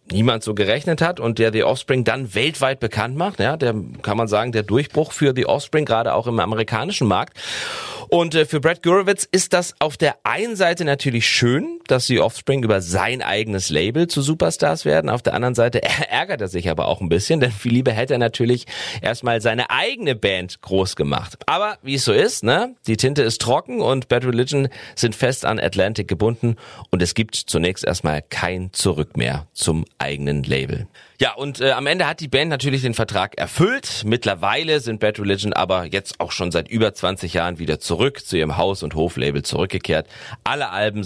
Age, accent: 40-59, German